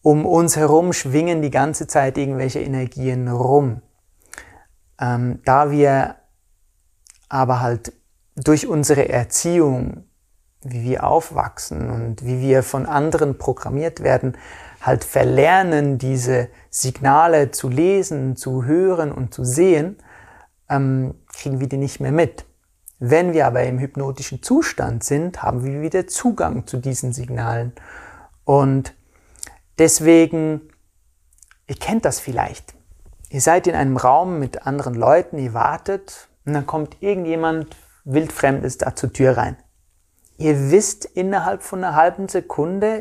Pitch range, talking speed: 125-160 Hz, 130 wpm